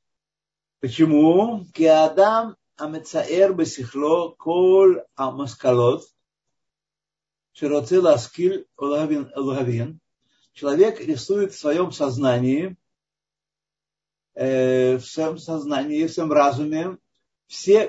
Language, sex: Russian, male